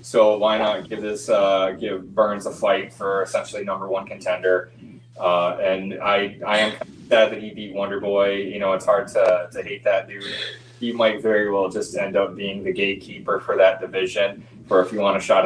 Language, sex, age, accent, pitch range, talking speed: English, male, 20-39, American, 95-110 Hz, 205 wpm